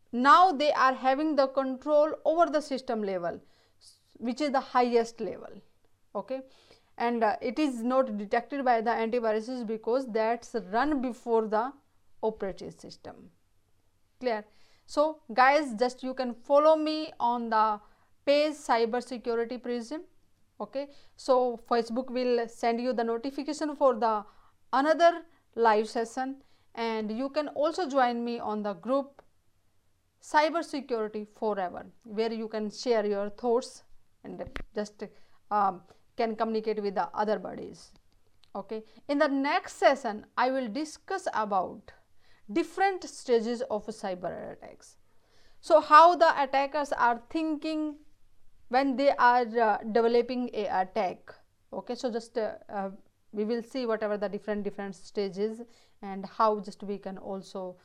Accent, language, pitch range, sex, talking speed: Indian, English, 215-280 Hz, female, 135 wpm